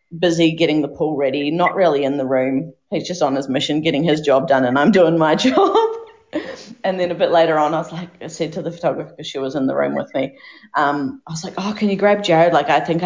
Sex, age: female, 30-49